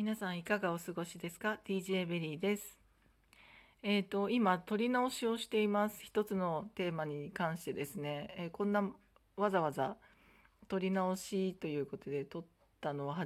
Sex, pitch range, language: female, 160-200 Hz, Japanese